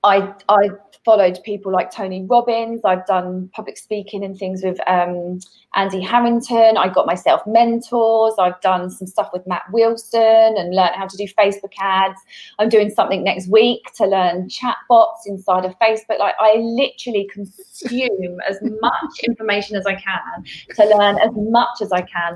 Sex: female